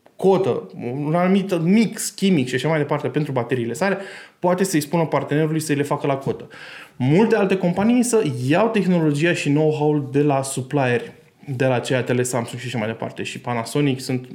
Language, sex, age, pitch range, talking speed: Romanian, male, 20-39, 130-180 Hz, 180 wpm